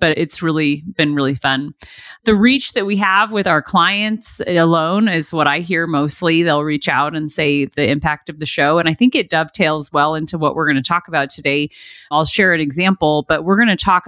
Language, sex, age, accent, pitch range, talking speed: English, female, 30-49, American, 150-190 Hz, 225 wpm